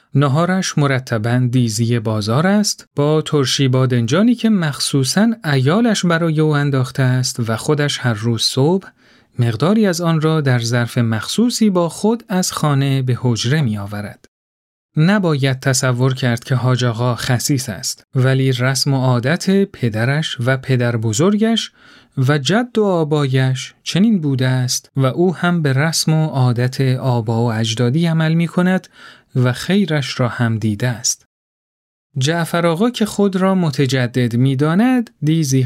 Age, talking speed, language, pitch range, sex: 40-59, 140 wpm, Persian, 125-175 Hz, male